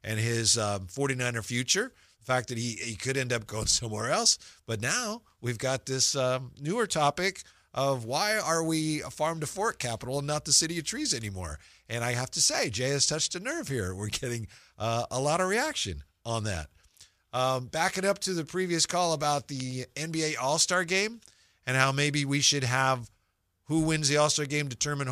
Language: English